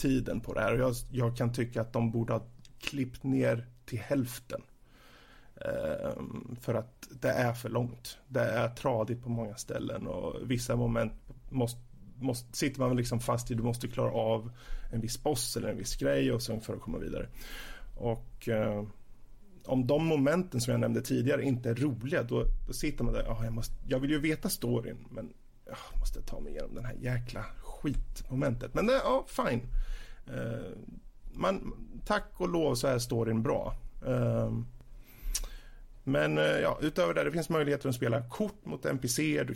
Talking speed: 180 wpm